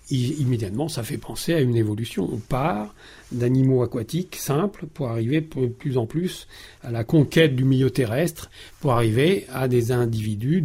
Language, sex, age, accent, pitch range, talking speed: French, male, 40-59, French, 120-150 Hz, 165 wpm